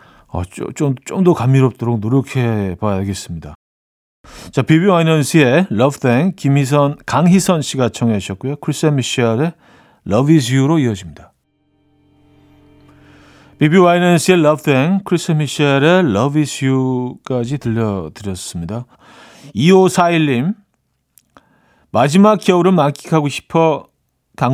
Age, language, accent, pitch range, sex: 40-59, Korean, native, 115-170 Hz, male